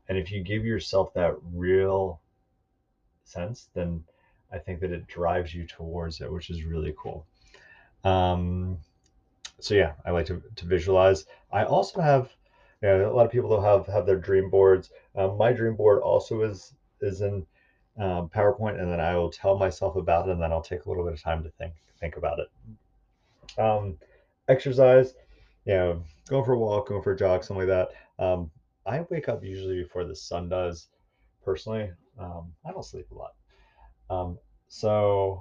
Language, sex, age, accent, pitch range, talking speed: English, male, 30-49, American, 85-100 Hz, 185 wpm